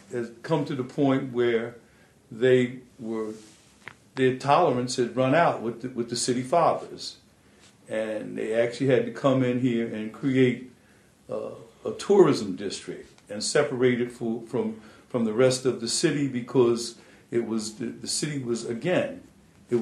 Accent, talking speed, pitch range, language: American, 155 wpm, 115-140 Hz, English